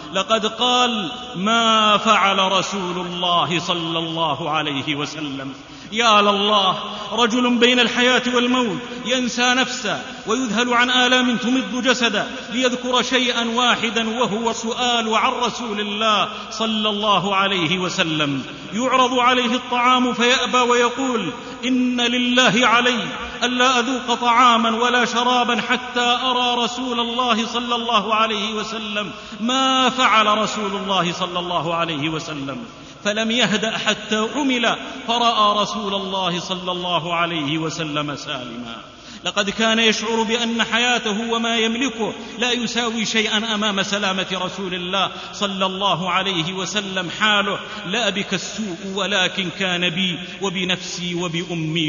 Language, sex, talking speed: Arabic, male, 120 wpm